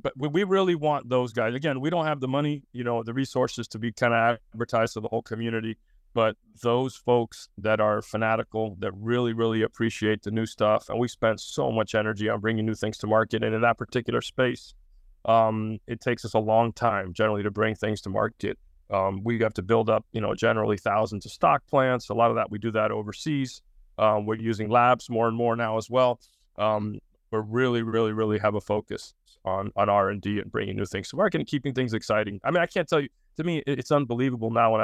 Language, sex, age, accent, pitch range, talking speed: English, male, 40-59, American, 110-120 Hz, 230 wpm